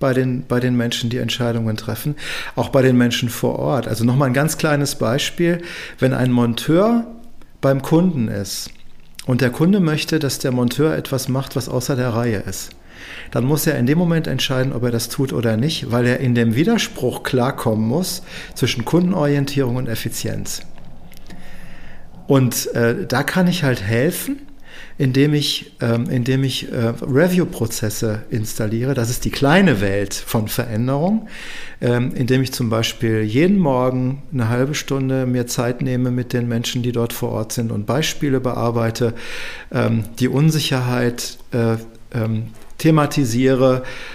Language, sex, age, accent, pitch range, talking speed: German, male, 50-69, German, 120-145 Hz, 150 wpm